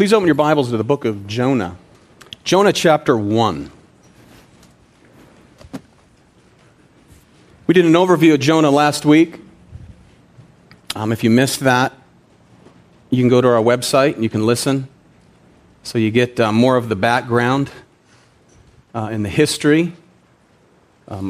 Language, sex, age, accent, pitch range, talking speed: English, male, 40-59, American, 120-160 Hz, 135 wpm